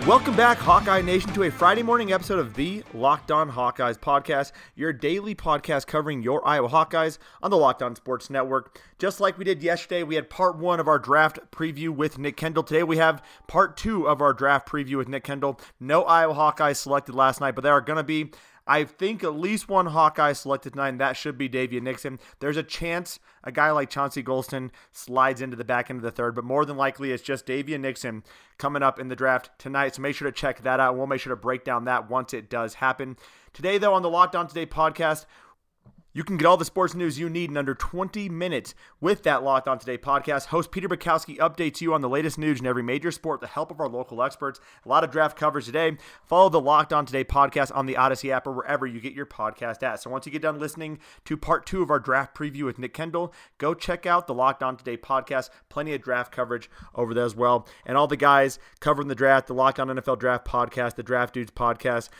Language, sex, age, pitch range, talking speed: English, male, 30-49, 130-160 Hz, 240 wpm